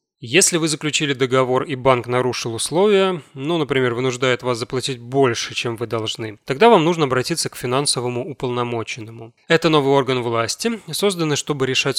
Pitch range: 120-155 Hz